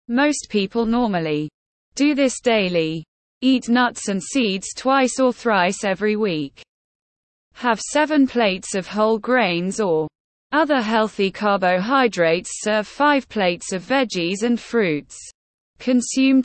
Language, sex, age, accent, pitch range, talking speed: English, female, 20-39, British, 185-250 Hz, 120 wpm